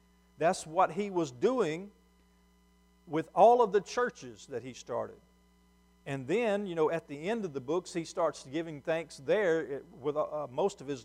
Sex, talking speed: male, 180 wpm